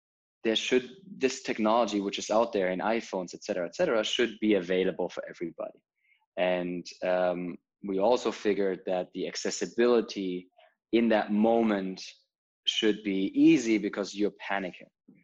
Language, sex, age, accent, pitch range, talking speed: English, male, 20-39, German, 90-105 Hz, 140 wpm